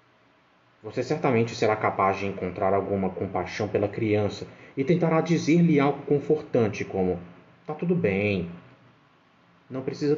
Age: 20-39